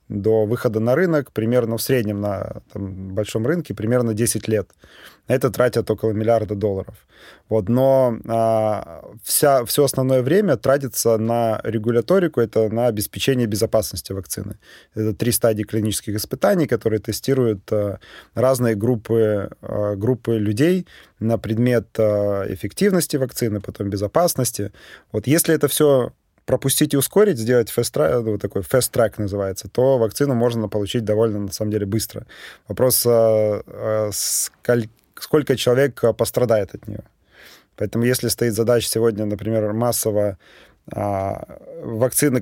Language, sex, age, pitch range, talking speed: Russian, male, 20-39, 105-125 Hz, 115 wpm